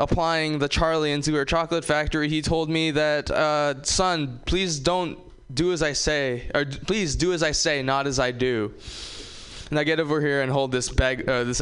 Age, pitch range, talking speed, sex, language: 20-39, 115-155 Hz, 210 wpm, male, English